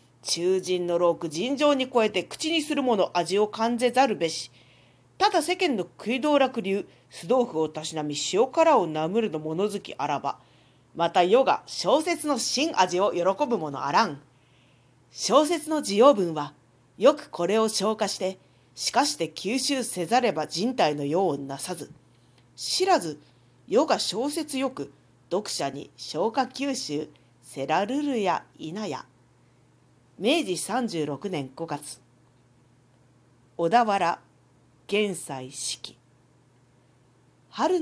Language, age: Japanese, 40-59